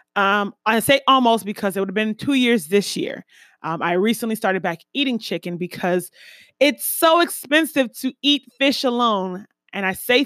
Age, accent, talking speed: 20-39, American, 180 wpm